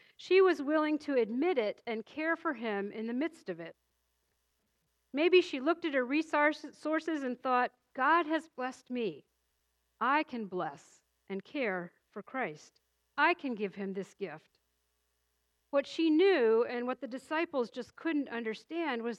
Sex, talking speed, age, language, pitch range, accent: female, 160 wpm, 50-69, English, 185-285 Hz, American